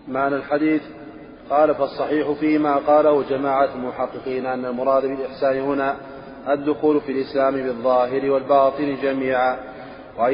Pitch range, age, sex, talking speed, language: 130-145 Hz, 30-49, male, 110 wpm, Arabic